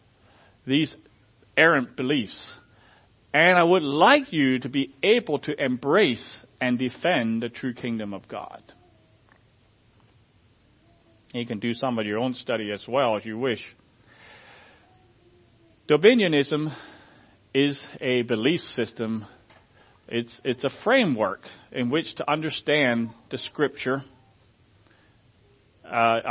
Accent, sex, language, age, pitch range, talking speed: American, male, English, 40-59, 110-135 Hz, 110 wpm